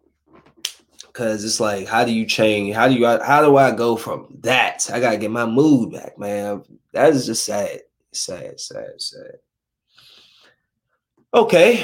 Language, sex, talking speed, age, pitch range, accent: English, male, 155 wpm, 20-39, 120-180 Hz, American